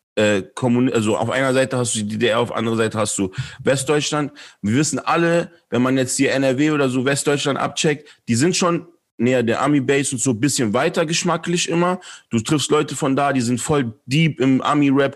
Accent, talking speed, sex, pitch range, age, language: German, 205 wpm, male, 125-150 Hz, 40-59, German